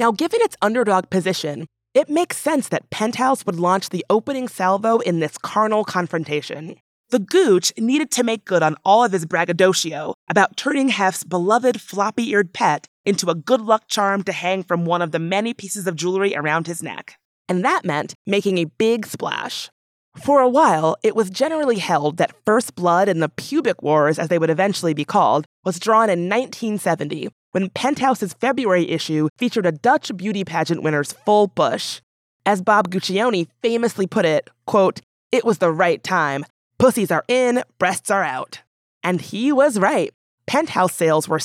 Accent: American